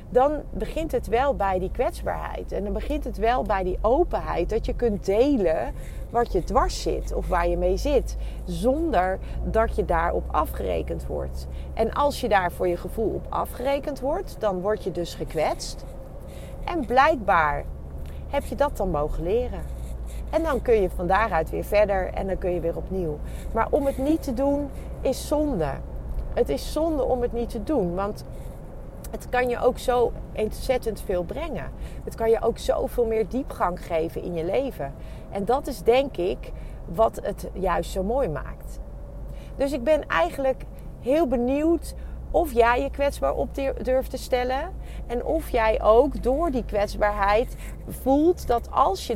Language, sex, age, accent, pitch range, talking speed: Dutch, female, 40-59, Dutch, 185-270 Hz, 175 wpm